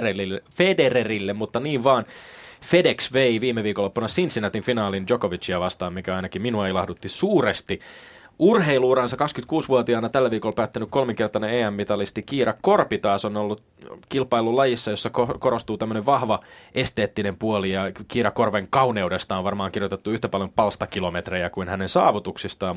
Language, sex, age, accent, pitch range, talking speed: Finnish, male, 20-39, native, 95-120 Hz, 130 wpm